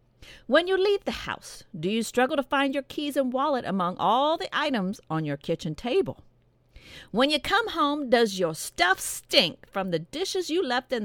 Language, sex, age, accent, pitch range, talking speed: English, female, 50-69, American, 170-285 Hz, 195 wpm